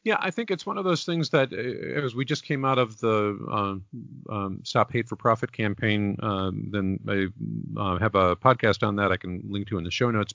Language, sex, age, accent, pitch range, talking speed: English, male, 40-59, American, 100-130 Hz, 230 wpm